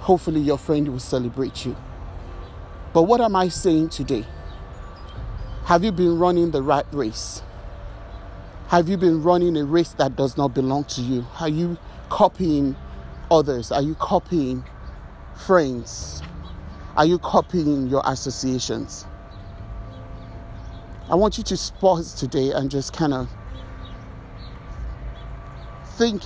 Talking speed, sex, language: 125 wpm, male, English